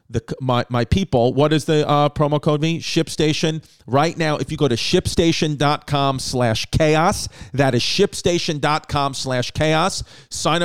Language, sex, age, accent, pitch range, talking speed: English, male, 40-59, American, 125-165 Hz, 150 wpm